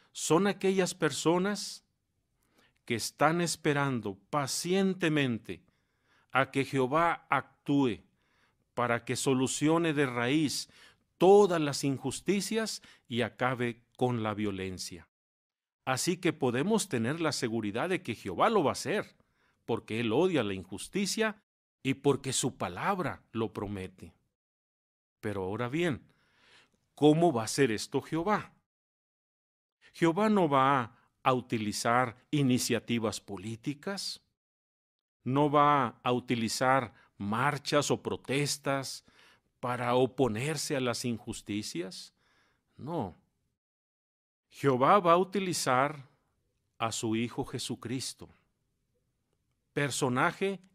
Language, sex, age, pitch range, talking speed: Spanish, male, 40-59, 115-160 Hz, 100 wpm